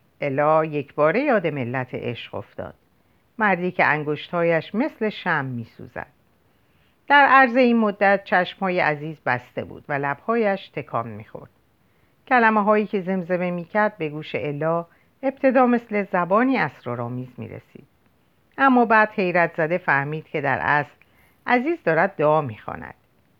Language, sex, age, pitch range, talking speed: Persian, female, 50-69, 140-220 Hz, 135 wpm